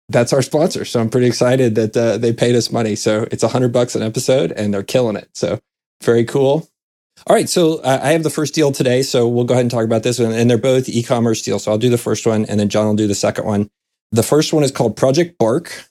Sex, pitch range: male, 110-130 Hz